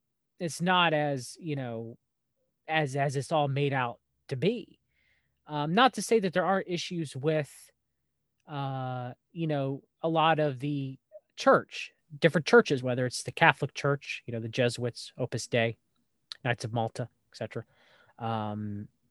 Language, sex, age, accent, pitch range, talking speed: English, male, 20-39, American, 125-155 Hz, 150 wpm